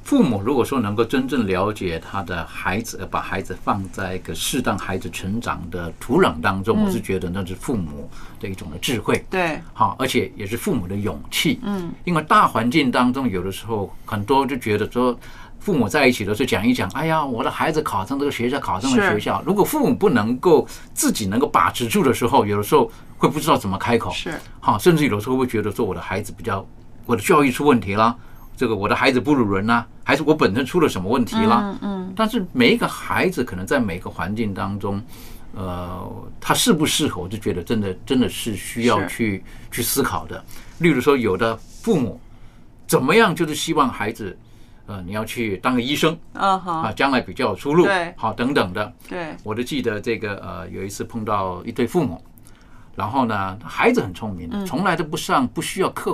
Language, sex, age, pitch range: Chinese, male, 50-69, 95-130 Hz